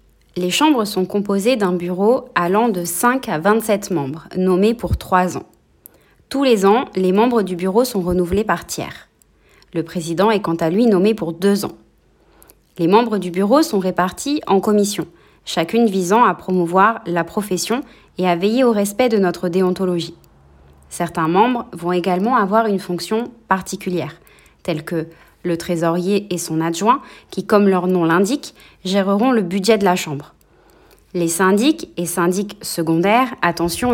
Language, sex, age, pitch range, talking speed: French, female, 30-49, 175-220 Hz, 160 wpm